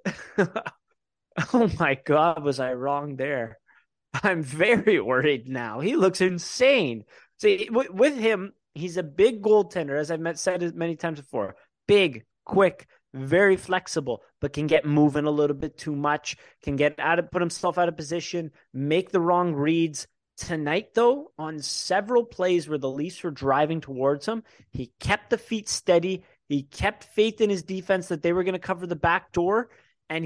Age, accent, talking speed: 30-49, American, 170 wpm